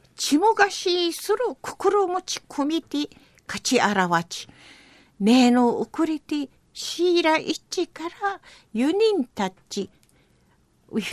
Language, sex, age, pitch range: Japanese, female, 50-69, 235-345 Hz